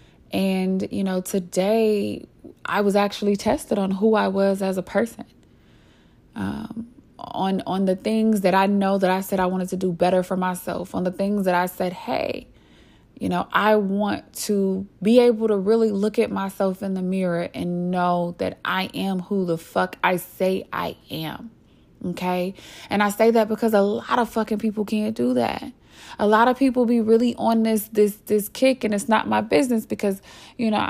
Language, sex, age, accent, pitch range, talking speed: English, female, 20-39, American, 185-230 Hz, 195 wpm